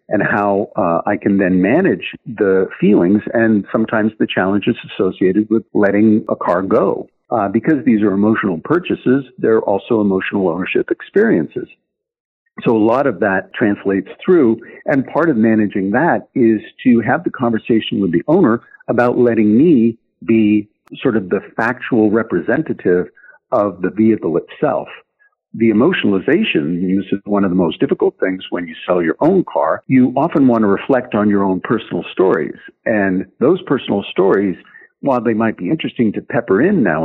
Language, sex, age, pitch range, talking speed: English, male, 60-79, 100-125 Hz, 165 wpm